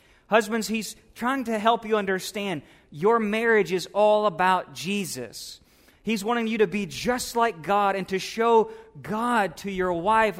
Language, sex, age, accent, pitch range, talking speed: English, male, 30-49, American, 145-210 Hz, 160 wpm